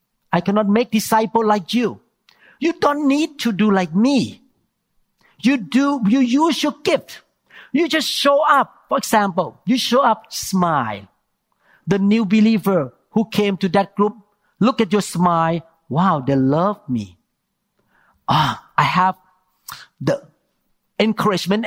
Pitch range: 205-280 Hz